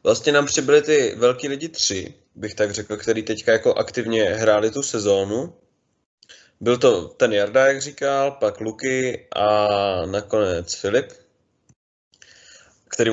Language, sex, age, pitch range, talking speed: Czech, male, 20-39, 105-125 Hz, 135 wpm